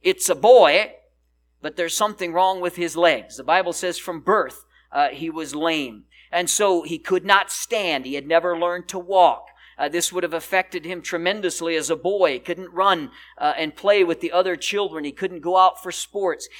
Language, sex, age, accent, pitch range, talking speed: English, male, 50-69, American, 160-205 Hz, 205 wpm